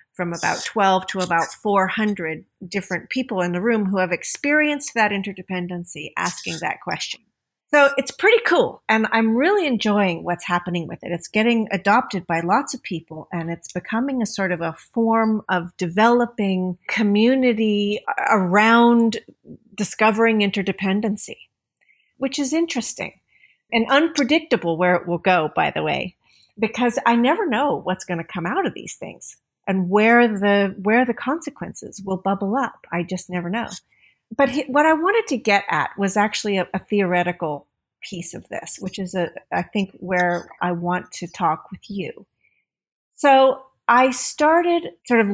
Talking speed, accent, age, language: 160 wpm, American, 40-59, English